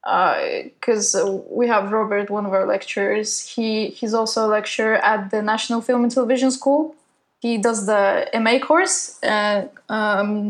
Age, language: 10-29, English